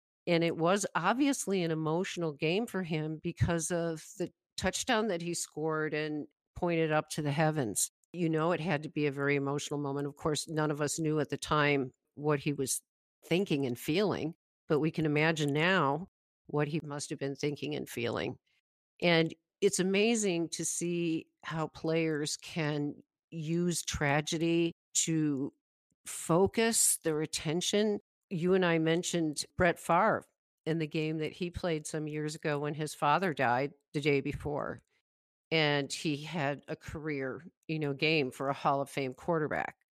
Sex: female